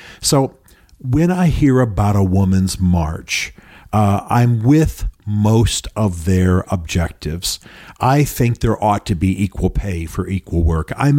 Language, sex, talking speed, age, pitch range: English, male, 145 wpm, 50-69, 90-115 Hz